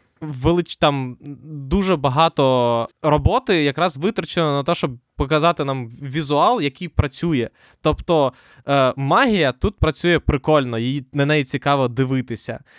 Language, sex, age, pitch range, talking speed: Ukrainian, male, 20-39, 135-170 Hz, 110 wpm